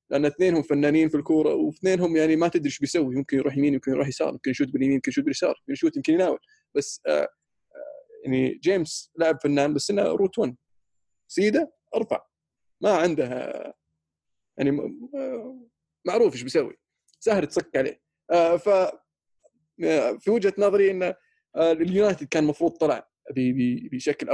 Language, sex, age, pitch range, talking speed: Arabic, male, 20-39, 135-170 Hz, 135 wpm